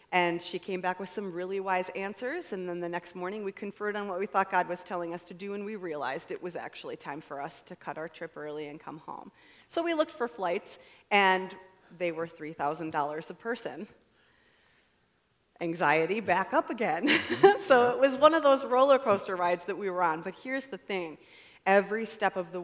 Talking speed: 210 wpm